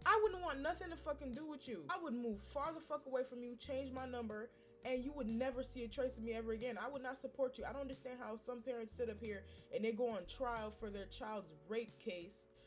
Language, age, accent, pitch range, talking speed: English, 20-39, American, 220-270 Hz, 265 wpm